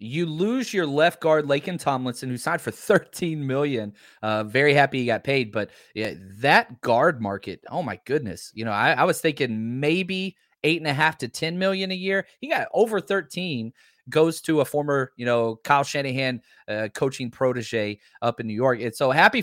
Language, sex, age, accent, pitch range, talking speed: English, male, 30-49, American, 125-170 Hz, 200 wpm